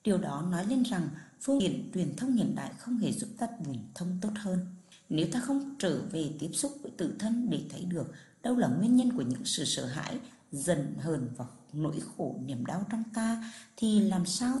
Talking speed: 220 wpm